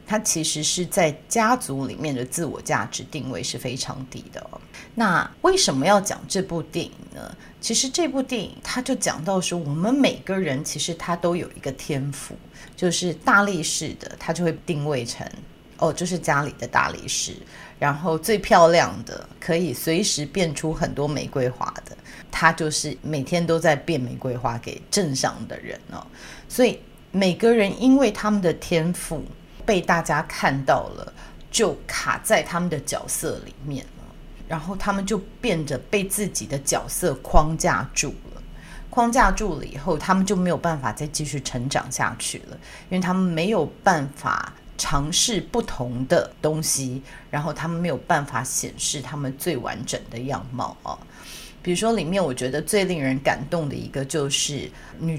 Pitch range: 140-185 Hz